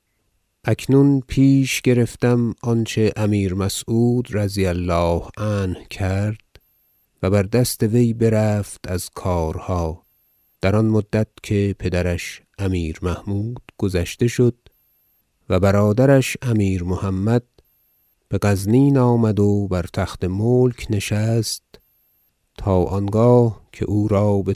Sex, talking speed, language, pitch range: male, 110 wpm, Persian, 95-115 Hz